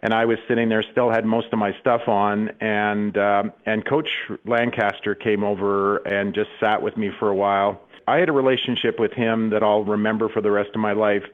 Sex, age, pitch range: male, 40-59, 110-125 Hz